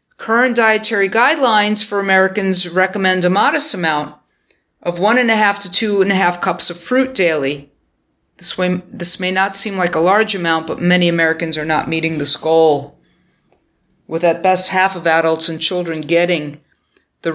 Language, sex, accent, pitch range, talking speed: English, female, American, 165-205 Hz, 175 wpm